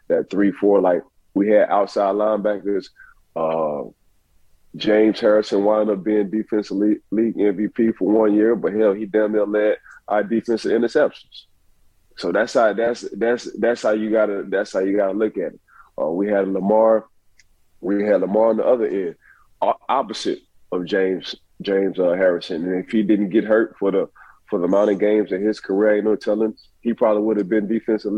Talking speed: 185 wpm